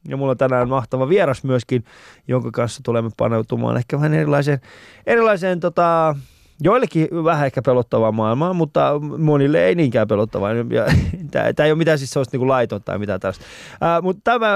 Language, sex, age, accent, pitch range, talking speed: Finnish, male, 20-39, native, 120-160 Hz, 170 wpm